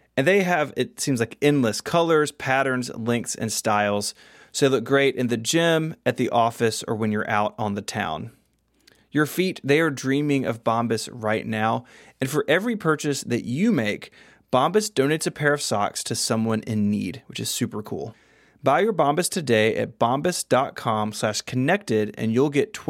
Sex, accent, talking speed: male, American, 180 wpm